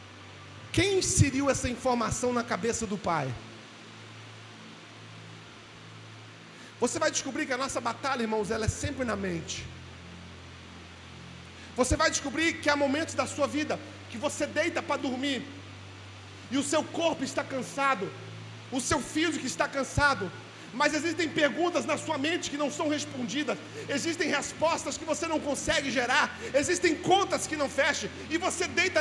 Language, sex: Gujarati, male